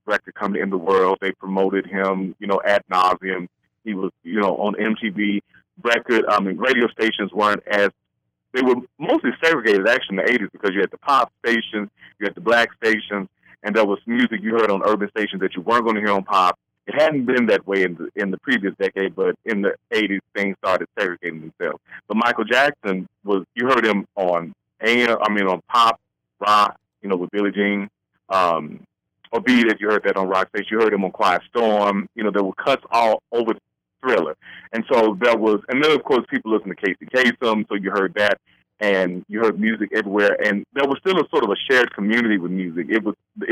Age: 40-59